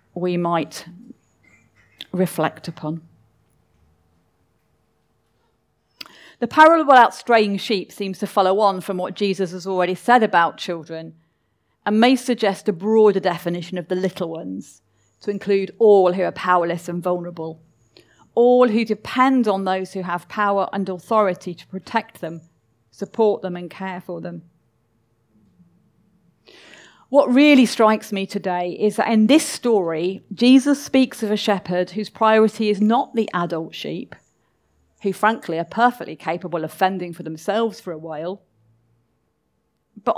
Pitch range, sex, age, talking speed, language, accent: 165-215 Hz, female, 40-59, 140 wpm, English, British